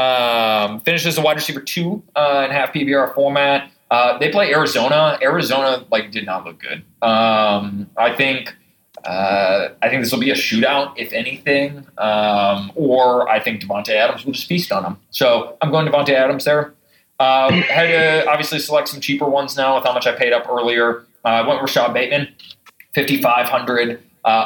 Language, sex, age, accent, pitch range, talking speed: English, male, 20-39, American, 105-145 Hz, 180 wpm